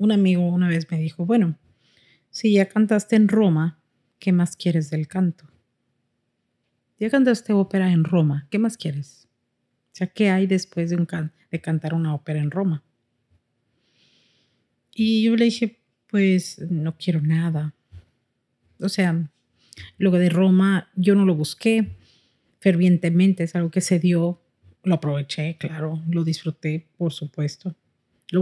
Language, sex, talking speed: Spanish, female, 150 wpm